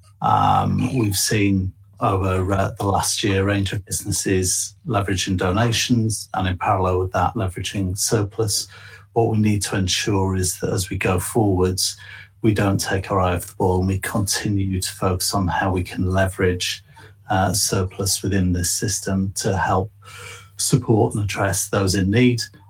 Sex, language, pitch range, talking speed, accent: male, English, 95-105 Hz, 165 wpm, British